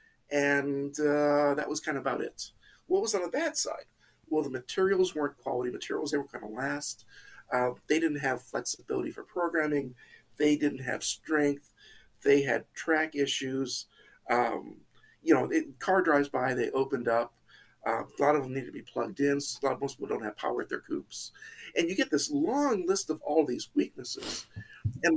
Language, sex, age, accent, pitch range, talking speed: English, male, 50-69, American, 135-205 Hz, 200 wpm